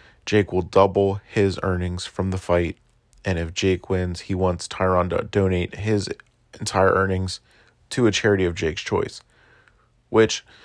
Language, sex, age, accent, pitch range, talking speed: English, male, 30-49, American, 95-110 Hz, 150 wpm